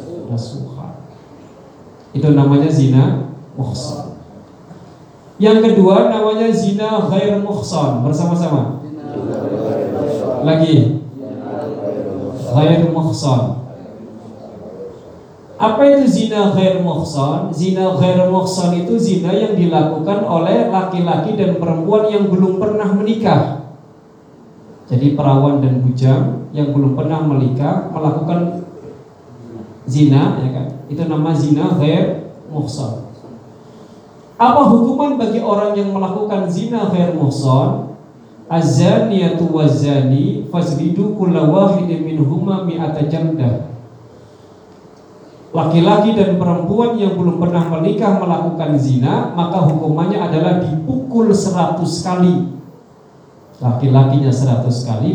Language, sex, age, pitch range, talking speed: Indonesian, male, 40-59, 140-185 Hz, 95 wpm